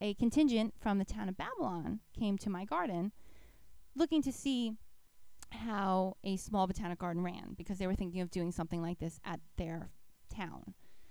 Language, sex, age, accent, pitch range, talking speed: English, female, 20-39, American, 185-260 Hz, 175 wpm